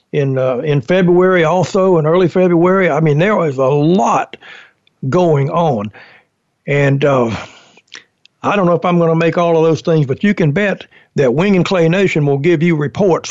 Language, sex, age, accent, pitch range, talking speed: English, male, 60-79, American, 140-175 Hz, 195 wpm